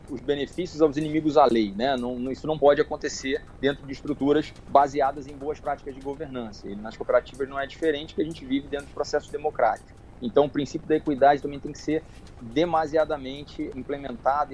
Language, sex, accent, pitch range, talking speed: Portuguese, male, Brazilian, 140-190 Hz, 190 wpm